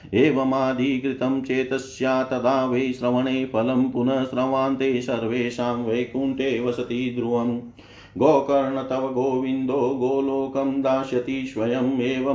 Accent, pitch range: native, 120-130 Hz